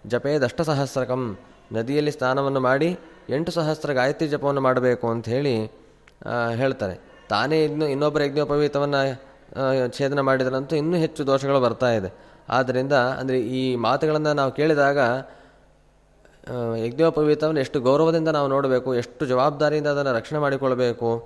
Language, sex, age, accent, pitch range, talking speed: Kannada, male, 20-39, native, 125-150 Hz, 110 wpm